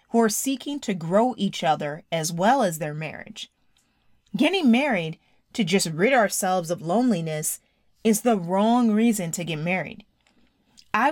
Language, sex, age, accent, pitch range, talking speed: English, female, 30-49, American, 175-240 Hz, 145 wpm